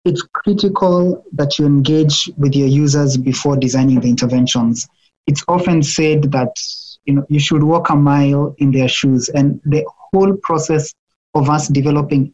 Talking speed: 160 wpm